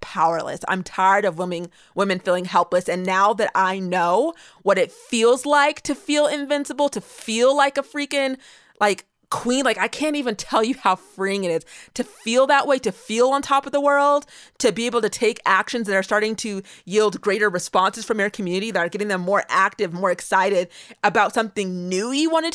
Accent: American